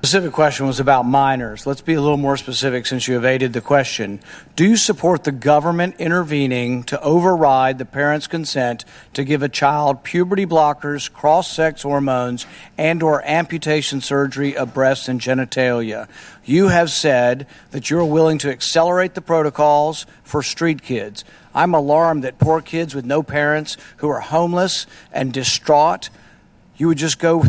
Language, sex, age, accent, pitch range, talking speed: English, male, 50-69, American, 135-170 Hz, 165 wpm